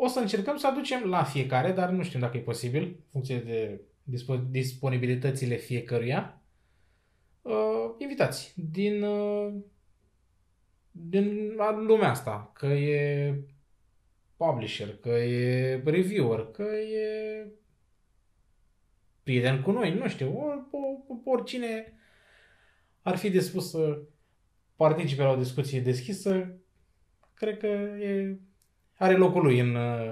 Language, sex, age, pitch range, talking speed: Romanian, male, 20-39, 115-185 Hz, 105 wpm